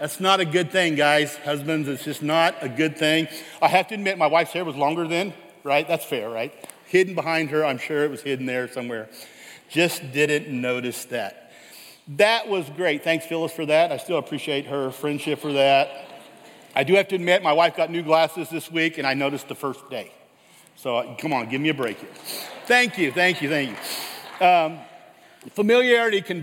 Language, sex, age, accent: English, male, 50-69, American